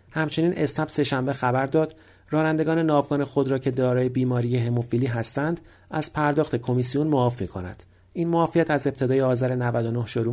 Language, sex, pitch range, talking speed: Persian, male, 120-155 Hz, 140 wpm